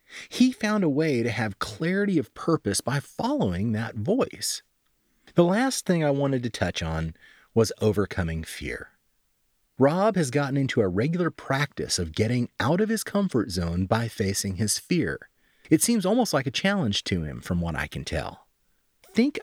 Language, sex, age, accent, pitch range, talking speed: English, male, 30-49, American, 95-155 Hz, 175 wpm